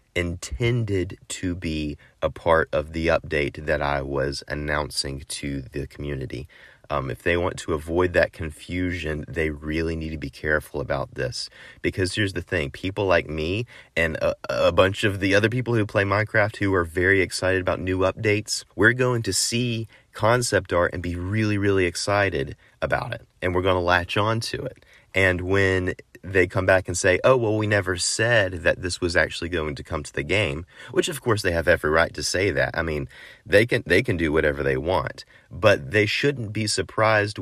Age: 30-49